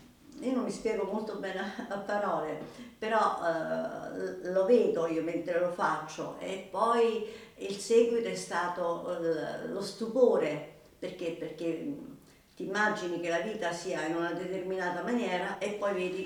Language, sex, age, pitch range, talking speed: Italian, female, 50-69, 170-225 Hz, 150 wpm